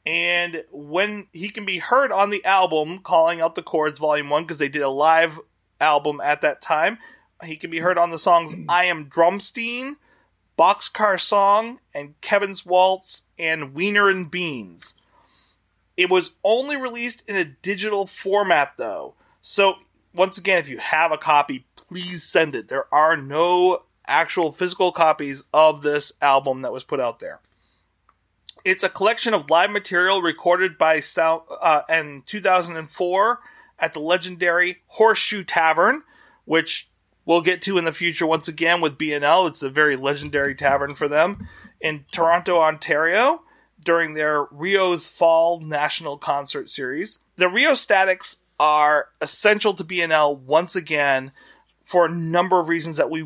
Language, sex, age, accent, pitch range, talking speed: English, male, 30-49, American, 155-190 Hz, 155 wpm